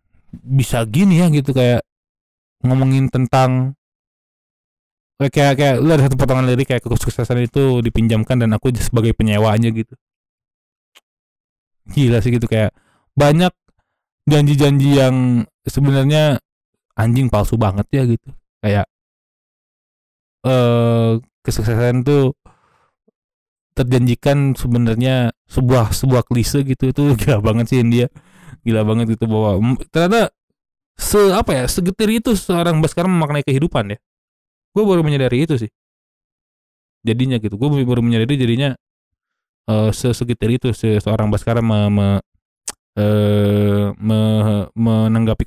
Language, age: Indonesian, 20-39